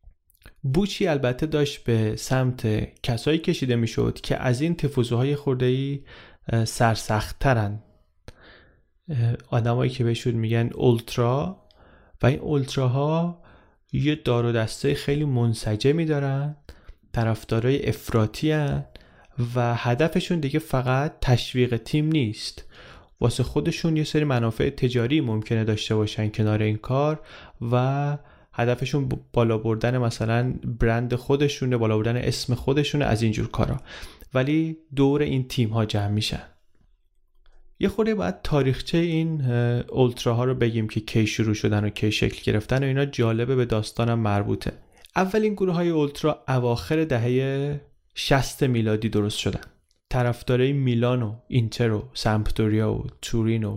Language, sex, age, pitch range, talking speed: Persian, male, 30-49, 110-140 Hz, 130 wpm